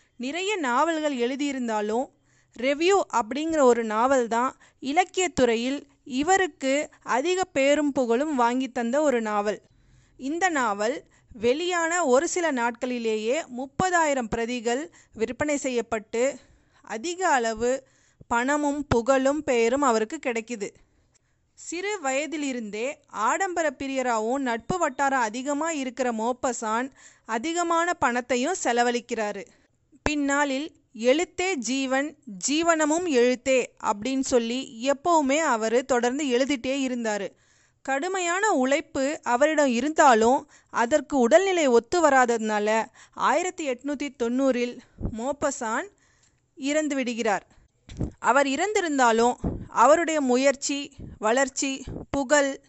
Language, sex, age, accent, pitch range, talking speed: Tamil, female, 30-49, native, 245-300 Hz, 90 wpm